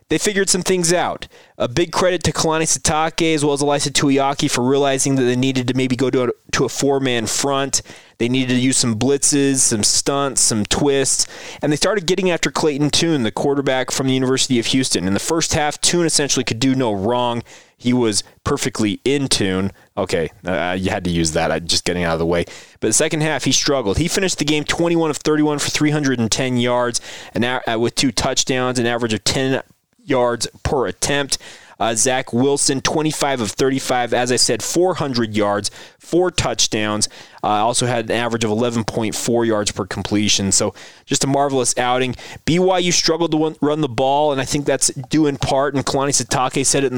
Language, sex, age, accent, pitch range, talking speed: English, male, 20-39, American, 115-145 Hz, 200 wpm